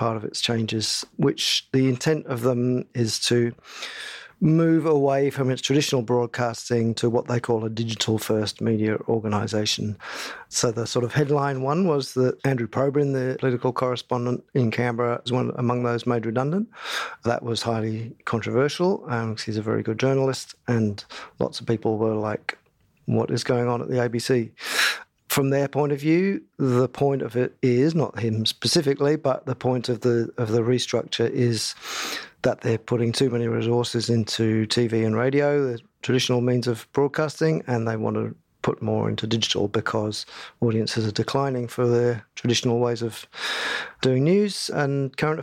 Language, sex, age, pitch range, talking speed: English, male, 50-69, 115-135 Hz, 170 wpm